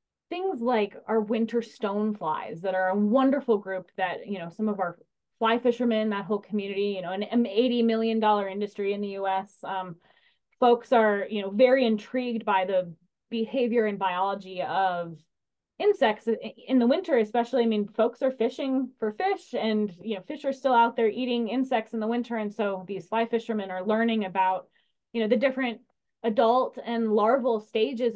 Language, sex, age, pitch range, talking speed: English, female, 20-39, 195-235 Hz, 180 wpm